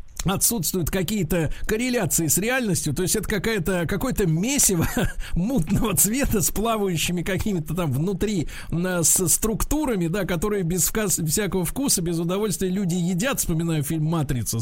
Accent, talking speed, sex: native, 120 wpm, male